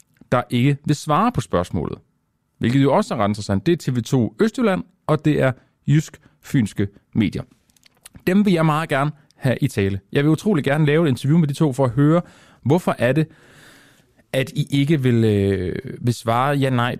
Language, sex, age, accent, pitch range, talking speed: Danish, male, 30-49, native, 100-145 Hz, 185 wpm